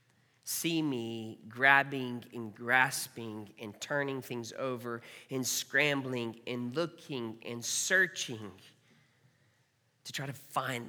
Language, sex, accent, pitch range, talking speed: English, male, American, 115-140 Hz, 105 wpm